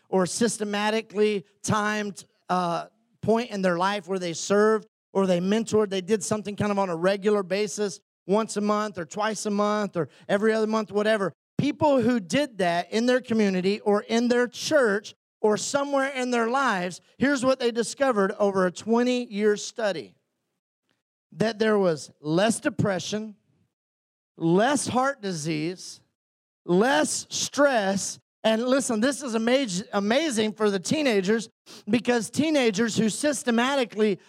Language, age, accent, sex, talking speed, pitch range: English, 40-59, American, male, 140 wpm, 195-255 Hz